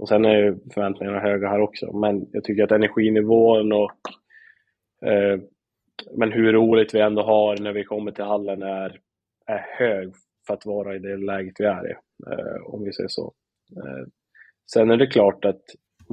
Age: 20-39